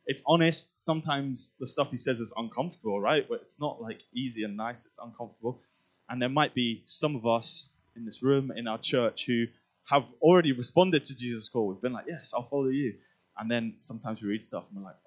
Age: 20-39